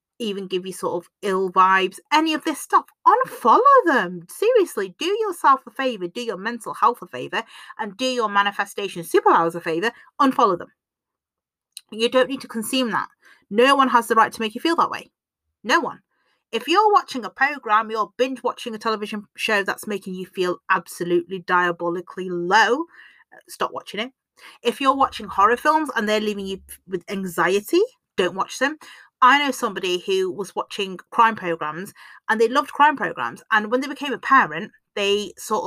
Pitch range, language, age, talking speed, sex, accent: 190-270 Hz, English, 30-49, 180 wpm, female, British